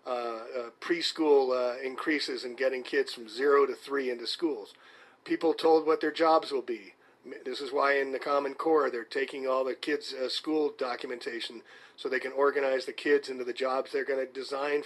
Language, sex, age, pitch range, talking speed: English, male, 40-59, 135-200 Hz, 200 wpm